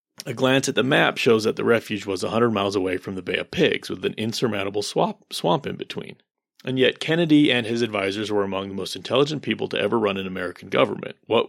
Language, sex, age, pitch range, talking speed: English, male, 30-49, 100-130 Hz, 225 wpm